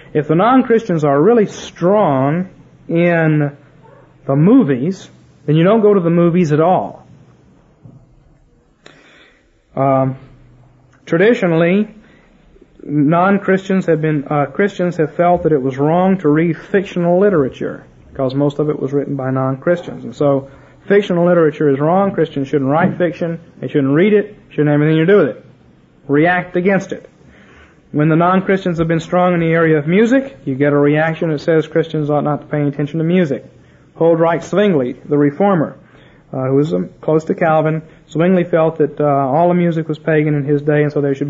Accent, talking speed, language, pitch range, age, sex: American, 175 wpm, English, 145-180 Hz, 40-59, male